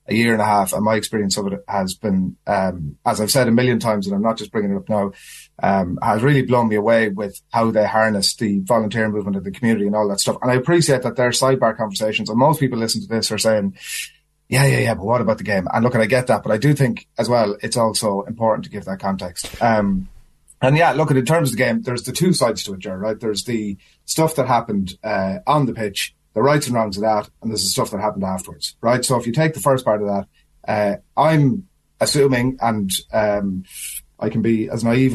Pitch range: 105-125 Hz